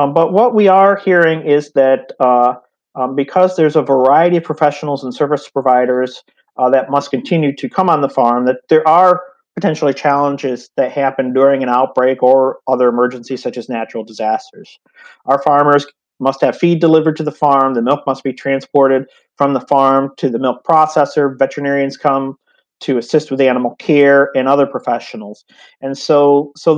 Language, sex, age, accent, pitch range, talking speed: English, male, 40-59, American, 135-160 Hz, 175 wpm